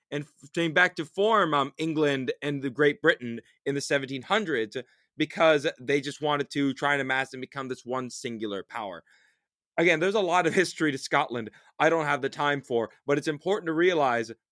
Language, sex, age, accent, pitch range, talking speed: English, male, 30-49, American, 130-160 Hz, 195 wpm